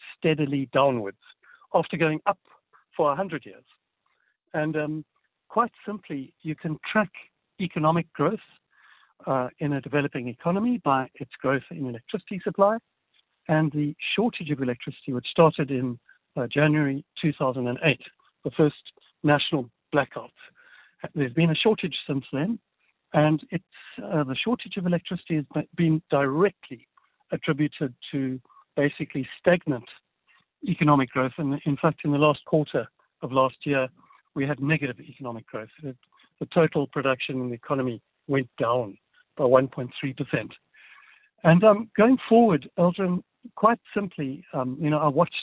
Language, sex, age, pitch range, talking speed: English, male, 60-79, 135-175 Hz, 135 wpm